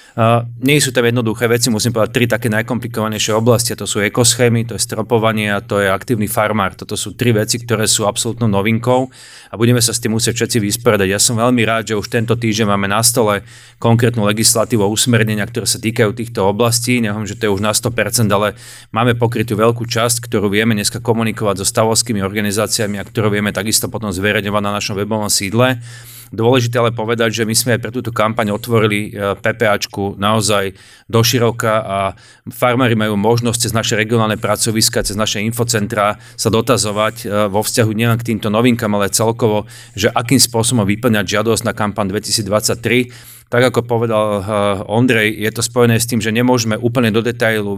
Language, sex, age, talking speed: Slovak, male, 30-49, 180 wpm